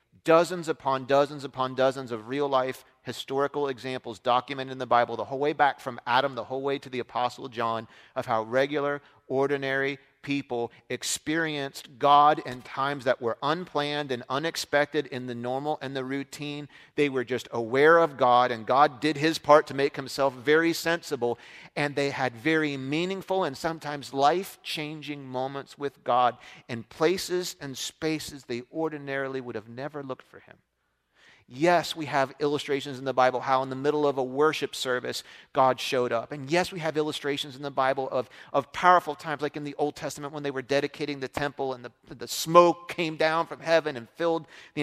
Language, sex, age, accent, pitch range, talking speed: English, male, 40-59, American, 130-155 Hz, 185 wpm